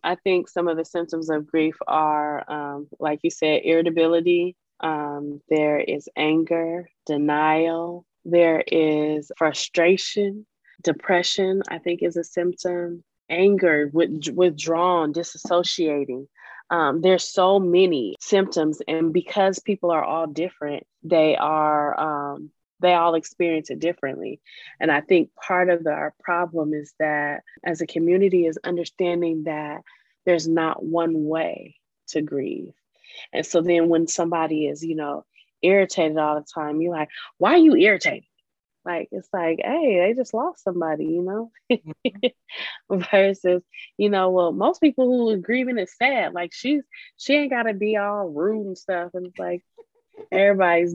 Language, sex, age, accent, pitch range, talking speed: English, female, 20-39, American, 160-190 Hz, 145 wpm